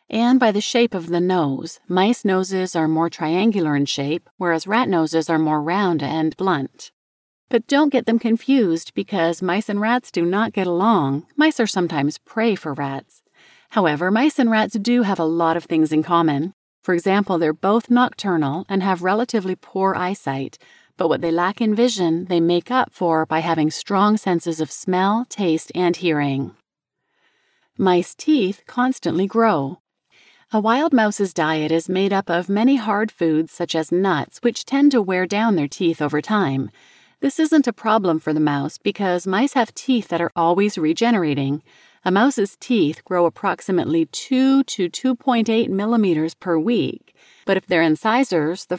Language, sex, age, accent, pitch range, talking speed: English, female, 40-59, American, 165-225 Hz, 170 wpm